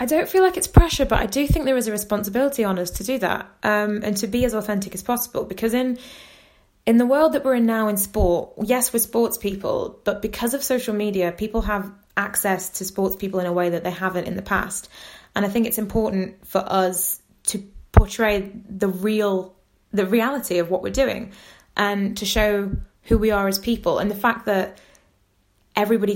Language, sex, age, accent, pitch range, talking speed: English, female, 20-39, British, 190-225 Hz, 210 wpm